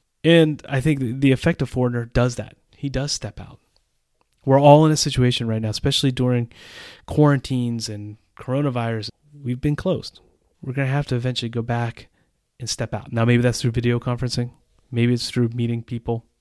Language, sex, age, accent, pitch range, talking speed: English, male, 30-49, American, 110-140 Hz, 185 wpm